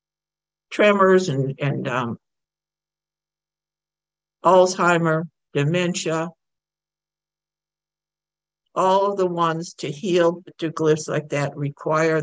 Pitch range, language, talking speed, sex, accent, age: 150-170 Hz, English, 85 wpm, male, American, 60-79